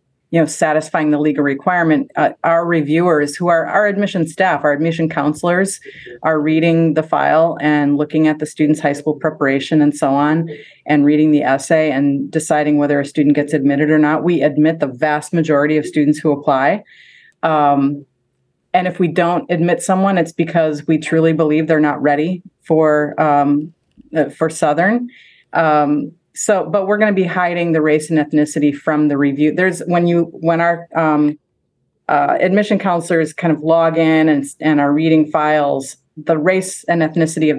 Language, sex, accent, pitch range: English, female, American, 150-170 Hz